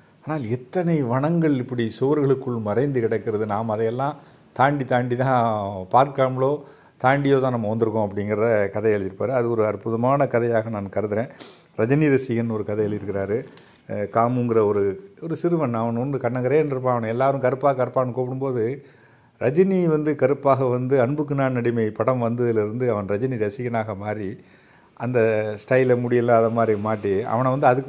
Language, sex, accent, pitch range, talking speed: Tamil, male, native, 110-135 Hz, 130 wpm